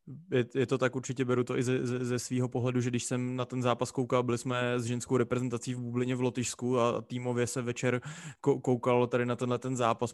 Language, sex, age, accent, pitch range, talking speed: Czech, male, 20-39, native, 120-130 Hz, 220 wpm